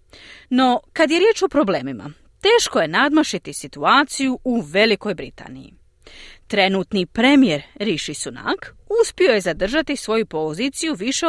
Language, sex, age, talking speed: Croatian, female, 30-49, 120 wpm